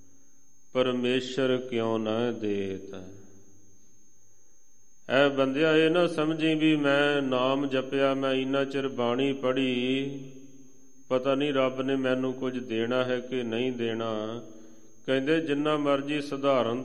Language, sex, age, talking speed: Punjabi, male, 40-59, 120 wpm